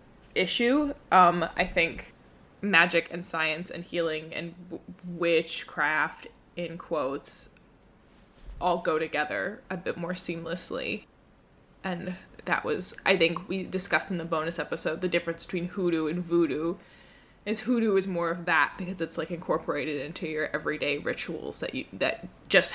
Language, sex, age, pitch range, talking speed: English, female, 20-39, 165-190 Hz, 145 wpm